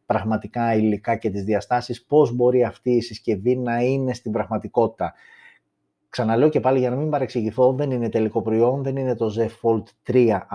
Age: 30-49